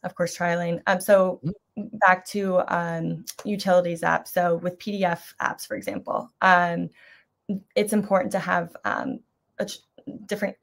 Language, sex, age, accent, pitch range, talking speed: English, female, 20-39, American, 175-200 Hz, 130 wpm